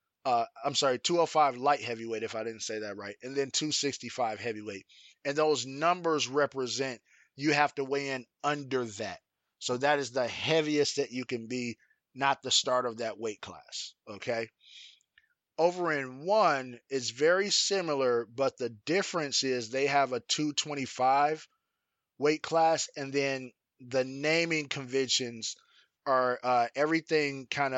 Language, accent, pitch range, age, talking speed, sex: English, American, 125-145 Hz, 20-39, 150 wpm, male